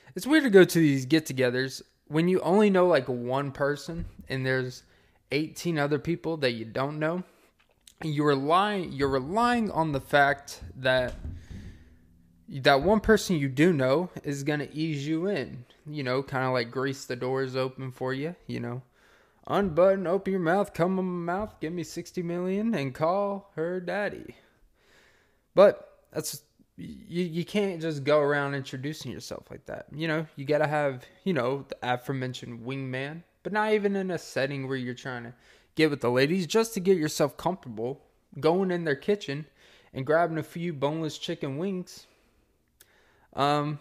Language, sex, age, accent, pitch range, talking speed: English, male, 20-39, American, 130-175 Hz, 170 wpm